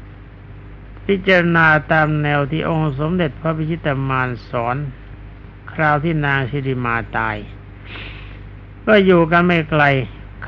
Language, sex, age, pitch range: Thai, male, 60-79, 100-160 Hz